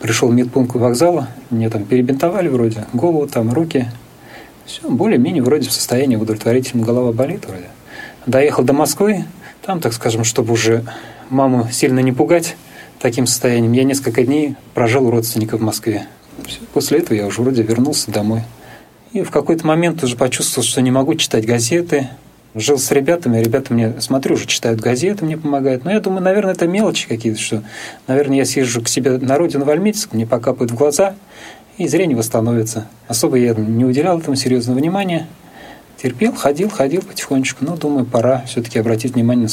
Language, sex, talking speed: Russian, male, 170 wpm